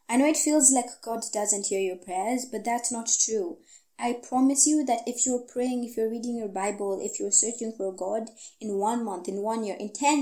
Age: 20-39